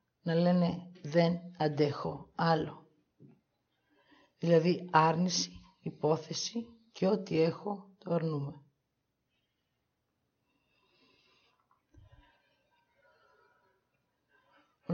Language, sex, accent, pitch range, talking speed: Greek, female, native, 170-220 Hz, 55 wpm